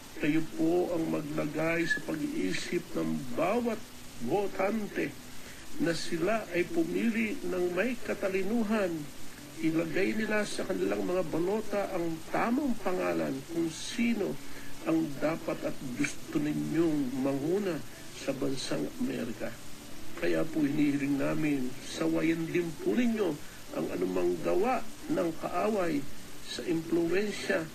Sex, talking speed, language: male, 110 wpm, Filipino